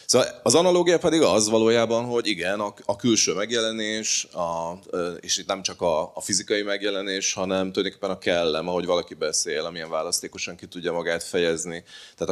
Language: Hungarian